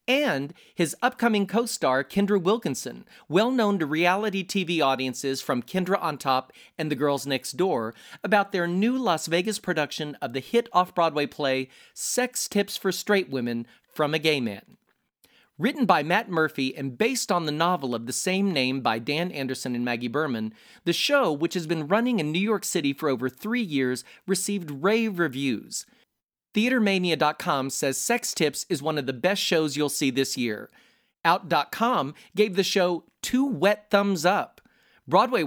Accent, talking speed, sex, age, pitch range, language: American, 165 wpm, male, 40-59, 145-205 Hz, English